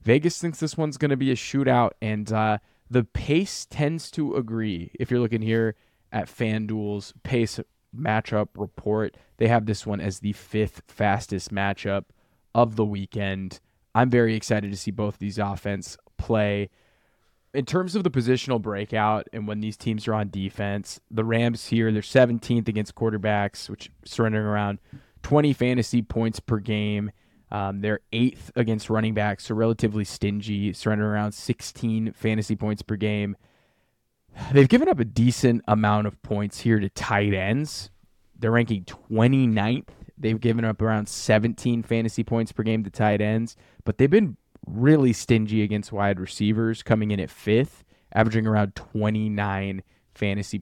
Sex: male